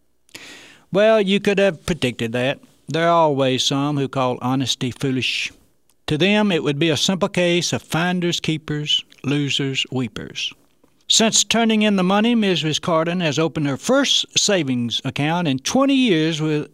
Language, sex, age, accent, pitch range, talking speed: English, male, 60-79, American, 130-175 Hz, 150 wpm